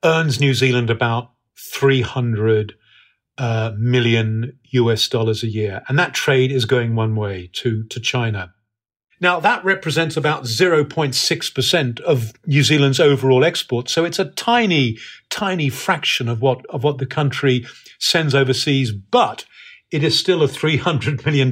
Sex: male